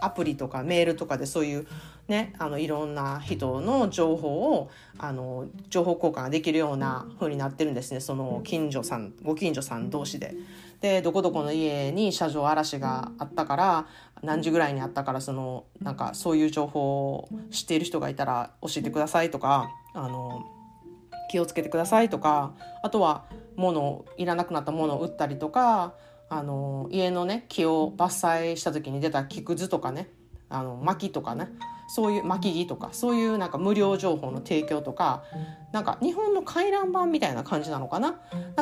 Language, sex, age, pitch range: Japanese, female, 30-49, 145-195 Hz